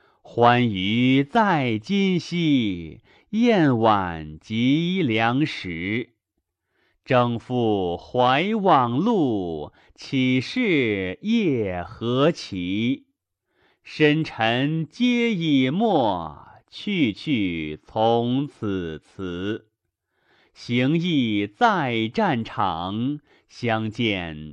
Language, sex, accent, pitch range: Chinese, male, native, 100-165 Hz